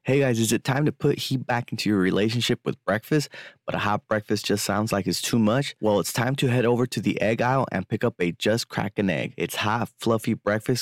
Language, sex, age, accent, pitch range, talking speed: English, male, 20-39, American, 100-125 Hz, 250 wpm